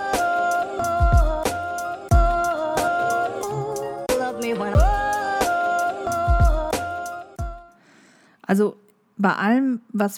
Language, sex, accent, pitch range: German, female, German, 190-230 Hz